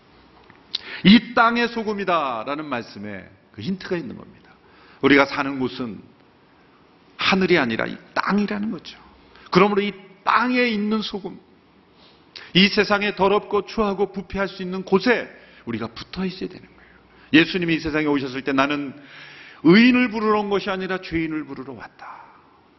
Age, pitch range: 40-59, 130-205 Hz